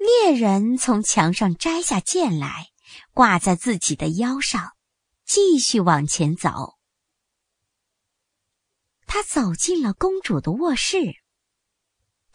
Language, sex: Chinese, male